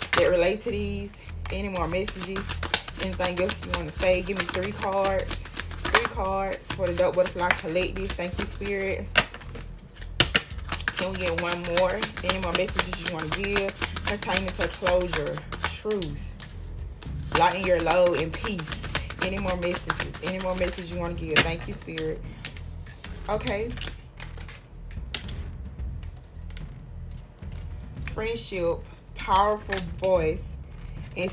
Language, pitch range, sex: English, 155-195 Hz, female